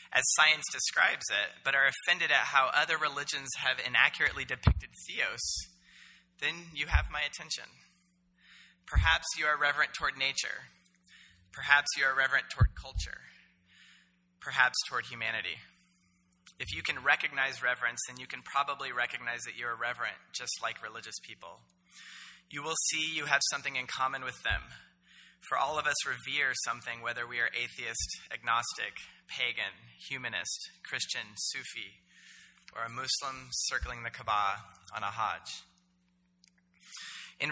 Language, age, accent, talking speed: English, 20-39, American, 140 wpm